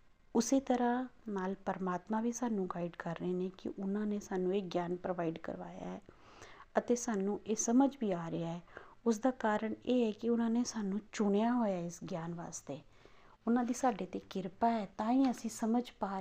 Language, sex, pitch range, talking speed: Punjabi, female, 180-230 Hz, 195 wpm